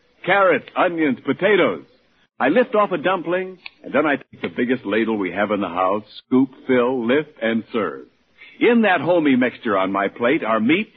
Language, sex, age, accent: English, male, 60-79, American